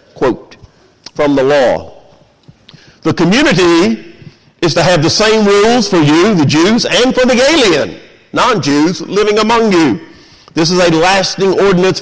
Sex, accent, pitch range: male, American, 140-210 Hz